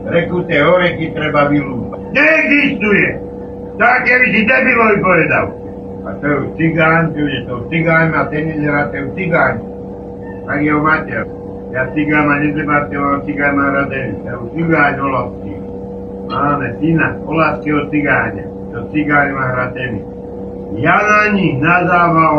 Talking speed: 130 wpm